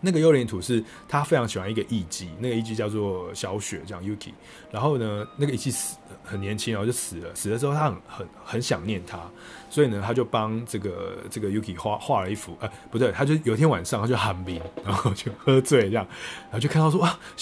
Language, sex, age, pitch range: Chinese, male, 20-39, 100-130 Hz